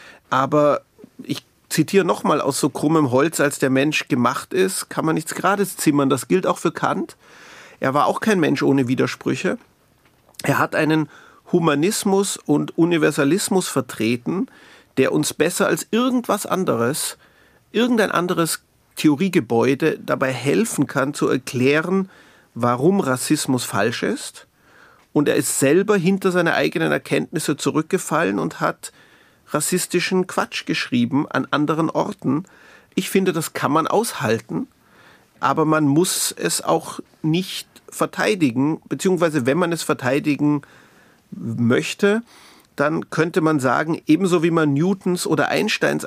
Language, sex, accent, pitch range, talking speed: German, male, German, 140-180 Hz, 130 wpm